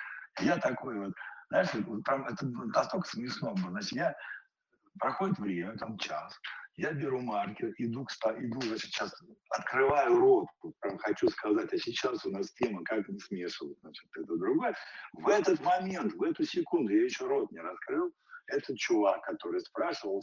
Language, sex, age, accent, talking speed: Russian, male, 50-69, native, 155 wpm